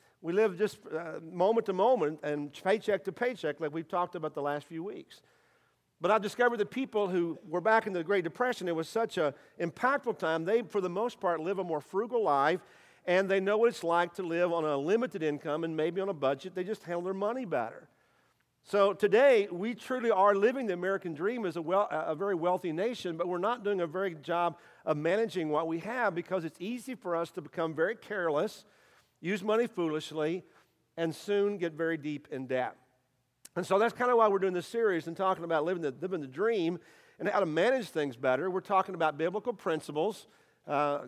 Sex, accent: male, American